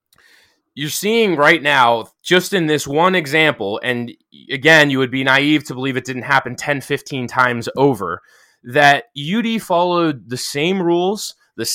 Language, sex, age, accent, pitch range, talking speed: English, male, 20-39, American, 125-170 Hz, 160 wpm